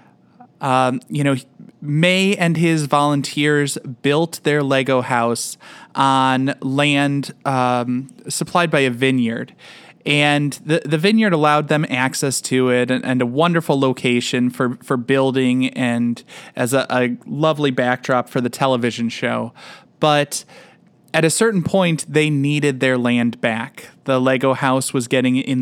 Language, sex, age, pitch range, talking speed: English, male, 20-39, 125-155 Hz, 145 wpm